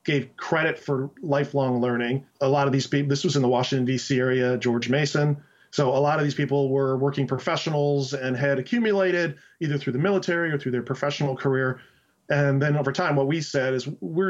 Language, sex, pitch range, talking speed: English, male, 130-150 Hz, 205 wpm